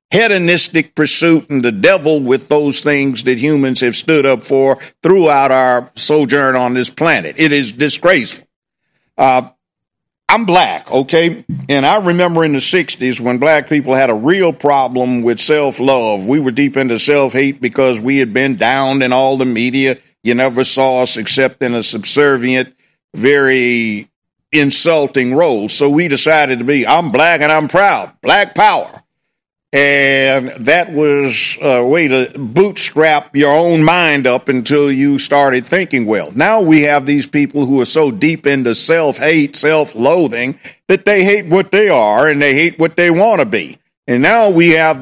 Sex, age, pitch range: male, 50-69, 130-165 Hz